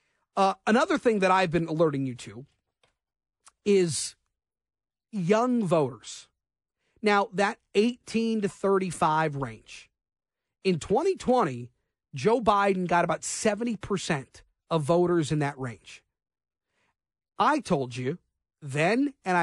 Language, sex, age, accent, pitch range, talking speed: English, male, 40-59, American, 155-220 Hz, 110 wpm